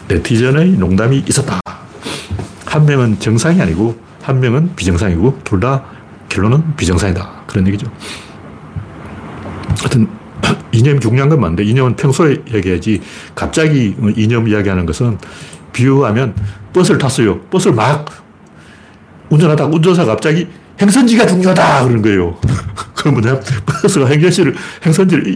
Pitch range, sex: 100-160 Hz, male